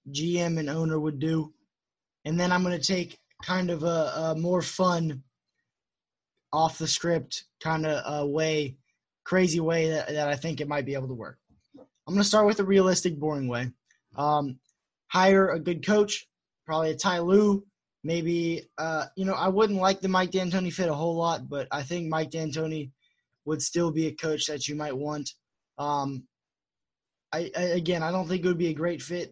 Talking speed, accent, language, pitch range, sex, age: 190 wpm, American, English, 150-180 Hz, male, 20-39